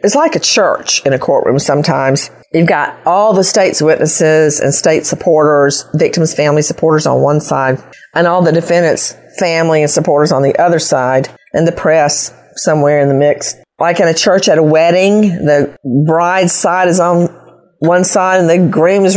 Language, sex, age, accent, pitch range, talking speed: English, female, 40-59, American, 150-180 Hz, 180 wpm